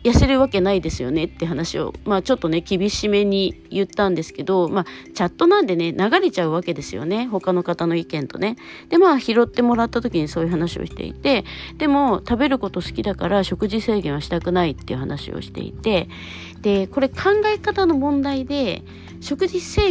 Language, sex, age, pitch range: Japanese, female, 40-59, 170-260 Hz